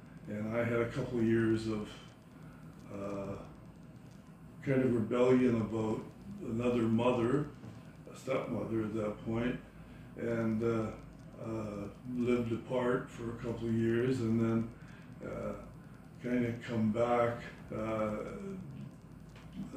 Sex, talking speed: male, 115 wpm